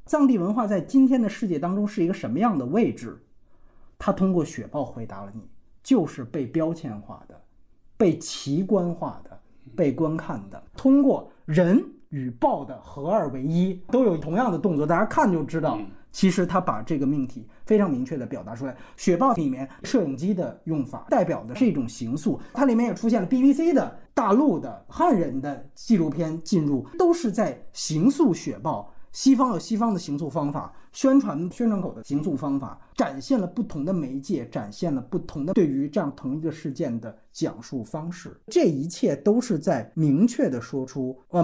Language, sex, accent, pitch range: Chinese, male, native, 140-225 Hz